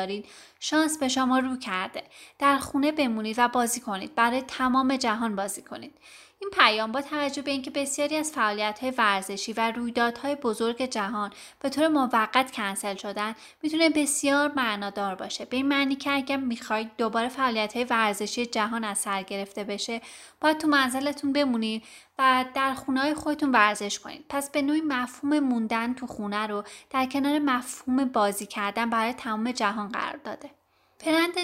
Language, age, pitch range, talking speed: Persian, 20-39, 215-275 Hz, 160 wpm